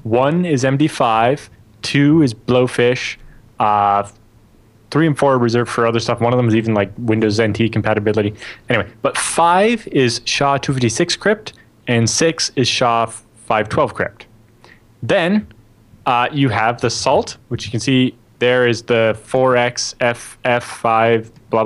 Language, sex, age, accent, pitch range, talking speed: English, male, 20-39, American, 110-130 Hz, 145 wpm